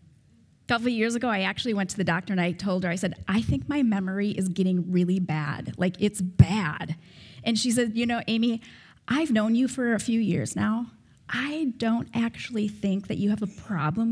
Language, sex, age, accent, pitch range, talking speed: English, female, 30-49, American, 185-240 Hz, 215 wpm